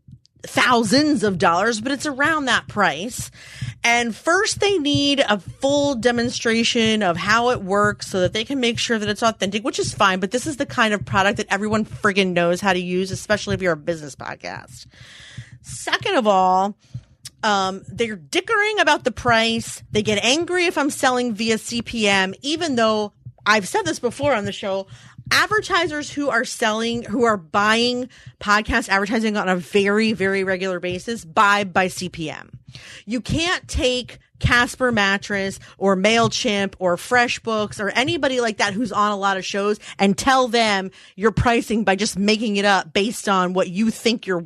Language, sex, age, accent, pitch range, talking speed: English, female, 30-49, American, 190-245 Hz, 175 wpm